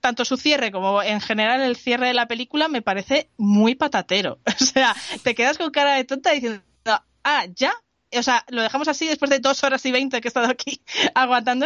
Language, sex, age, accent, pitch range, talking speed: Spanish, female, 20-39, Spanish, 200-265 Hz, 215 wpm